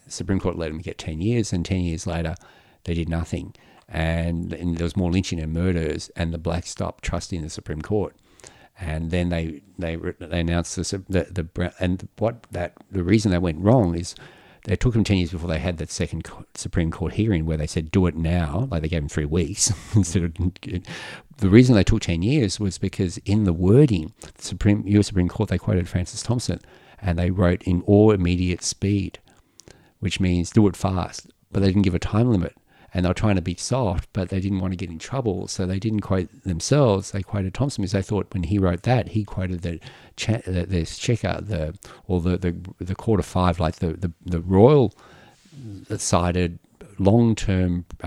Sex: male